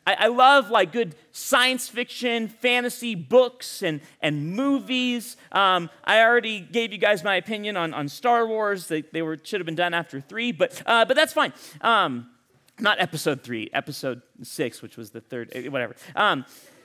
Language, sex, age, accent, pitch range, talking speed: English, male, 30-49, American, 170-240 Hz, 175 wpm